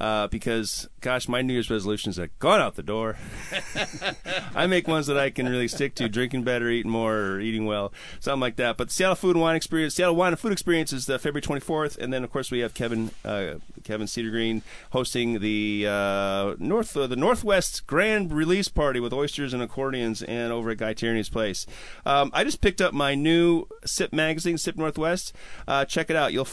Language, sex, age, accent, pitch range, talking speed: English, male, 30-49, American, 110-150 Hz, 210 wpm